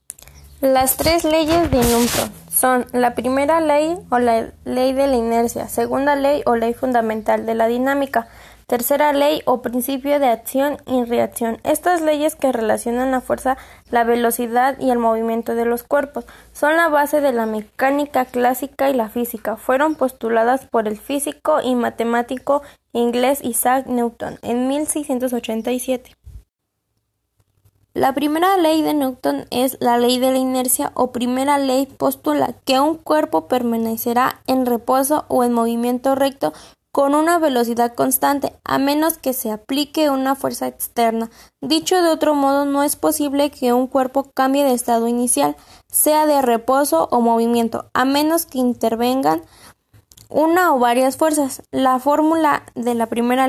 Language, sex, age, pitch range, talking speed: Spanish, female, 10-29, 235-285 Hz, 155 wpm